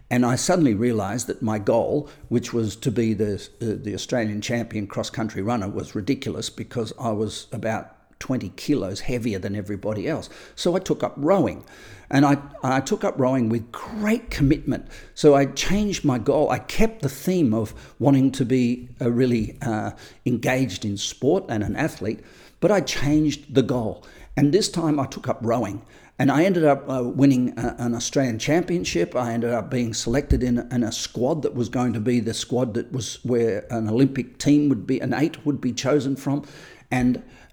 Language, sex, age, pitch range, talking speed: English, male, 50-69, 110-135 Hz, 185 wpm